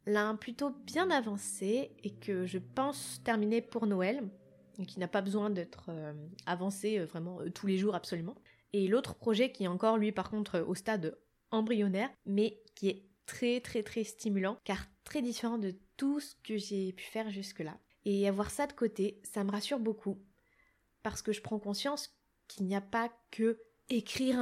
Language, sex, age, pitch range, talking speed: French, female, 20-39, 195-225 Hz, 180 wpm